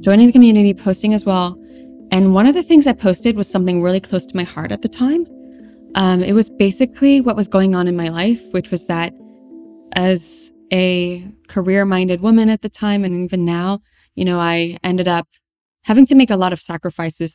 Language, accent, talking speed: English, American, 210 wpm